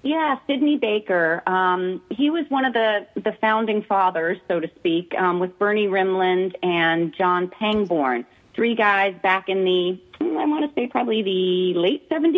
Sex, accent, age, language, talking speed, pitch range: female, American, 40-59, English, 165 wpm, 180-225 Hz